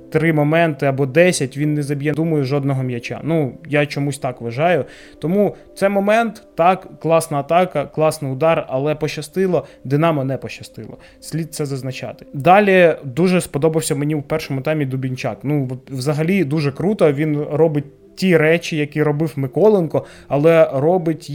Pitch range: 135-160 Hz